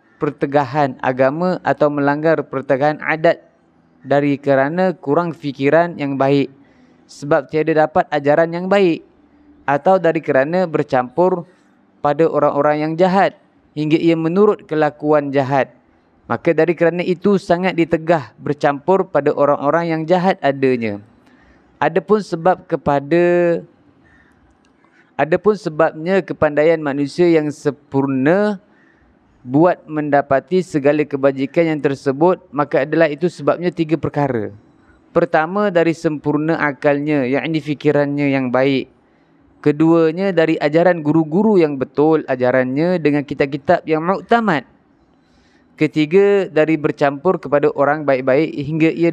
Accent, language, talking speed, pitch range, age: native, Indonesian, 115 wpm, 145-175 Hz, 30-49